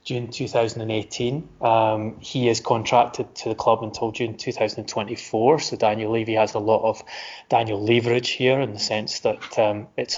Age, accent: 20-39, British